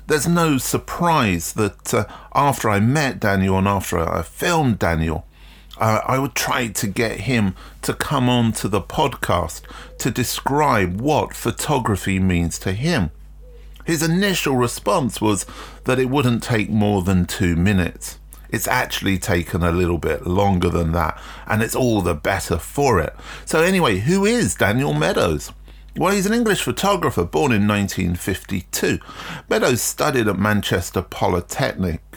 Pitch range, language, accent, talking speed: 90-120 Hz, English, British, 150 wpm